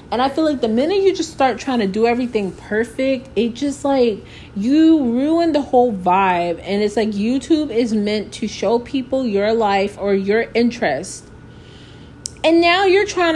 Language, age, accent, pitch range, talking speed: English, 20-39, American, 200-270 Hz, 180 wpm